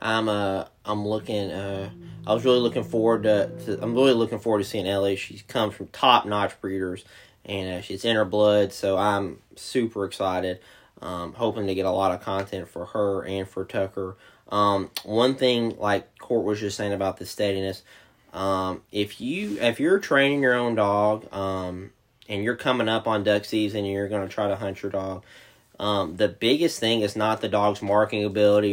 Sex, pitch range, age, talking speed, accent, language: male, 95-110 Hz, 20-39, 195 wpm, American, English